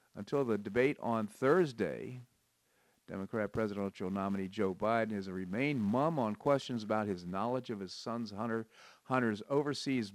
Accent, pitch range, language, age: American, 95-120 Hz, English, 50-69